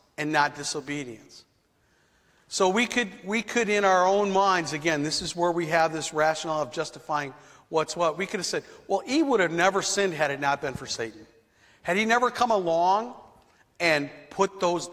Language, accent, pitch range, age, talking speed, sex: English, American, 150-190 Hz, 50-69, 195 wpm, male